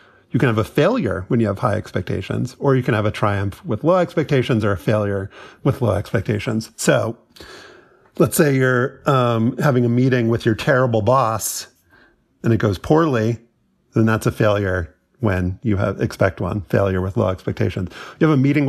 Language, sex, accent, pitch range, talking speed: English, male, American, 110-130 Hz, 185 wpm